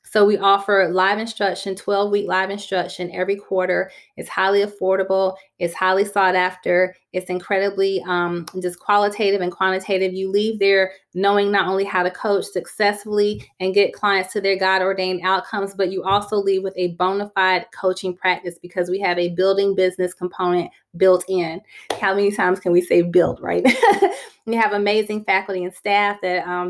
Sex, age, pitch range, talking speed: female, 30-49, 180-200 Hz, 175 wpm